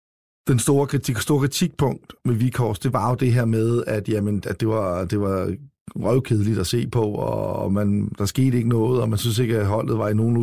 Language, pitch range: Danish, 105-125 Hz